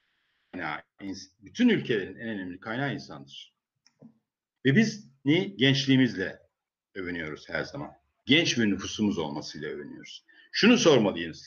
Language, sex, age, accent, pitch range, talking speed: Turkish, male, 50-69, native, 130-175 Hz, 105 wpm